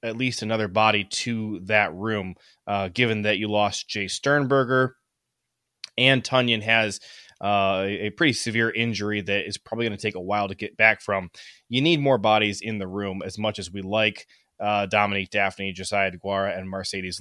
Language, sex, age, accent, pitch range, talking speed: English, male, 20-39, American, 105-125 Hz, 185 wpm